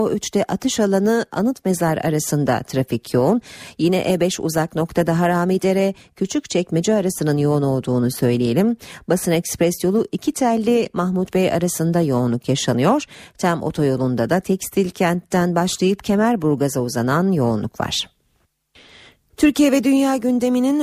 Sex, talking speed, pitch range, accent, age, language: female, 125 wpm, 160-230 Hz, native, 40-59, Turkish